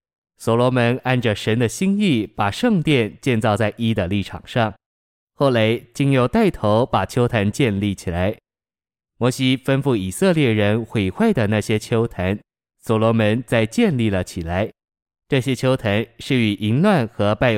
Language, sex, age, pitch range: Chinese, male, 20-39, 105-130 Hz